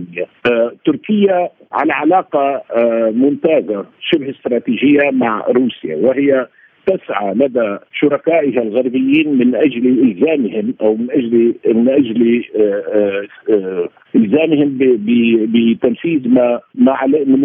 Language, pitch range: Arabic, 115-165 Hz